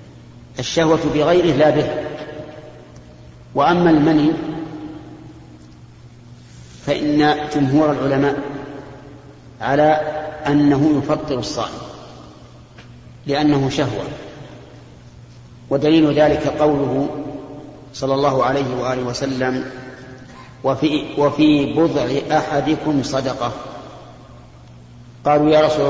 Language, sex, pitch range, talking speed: Arabic, male, 130-150 Hz, 70 wpm